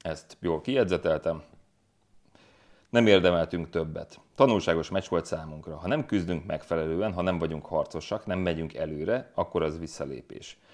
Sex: male